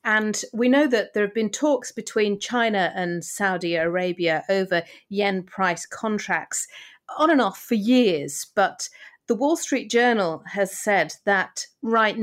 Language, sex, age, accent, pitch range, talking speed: English, female, 40-59, British, 180-235 Hz, 150 wpm